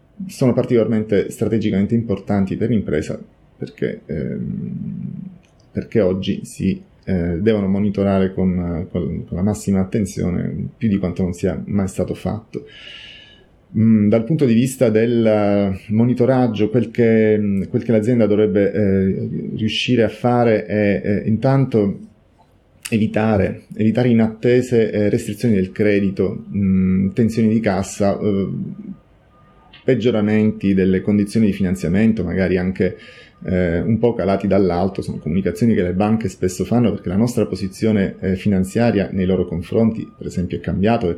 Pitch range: 95-115 Hz